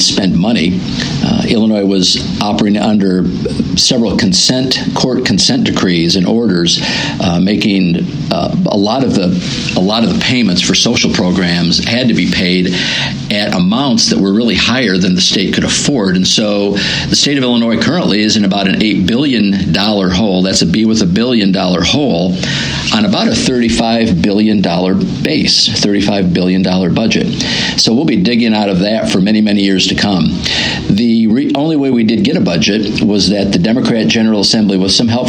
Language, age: English, 50-69